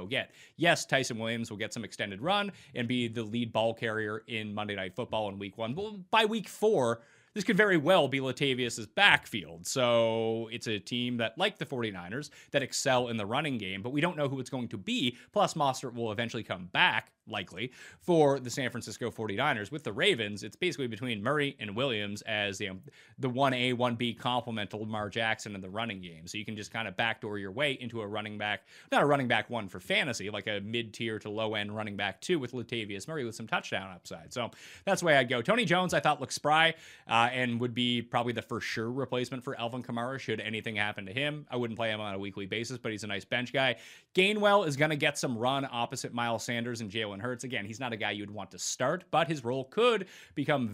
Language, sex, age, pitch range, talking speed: English, male, 30-49, 110-135 Hz, 235 wpm